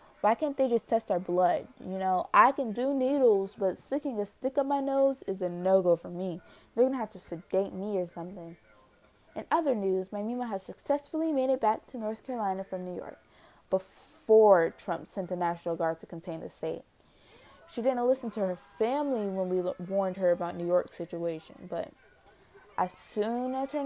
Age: 20-39